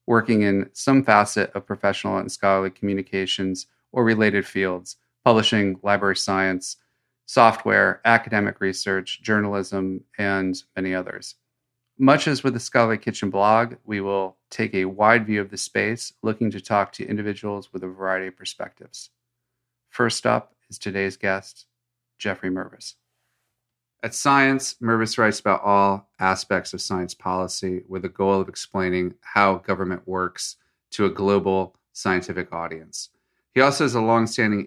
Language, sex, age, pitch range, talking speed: English, male, 40-59, 95-115 Hz, 145 wpm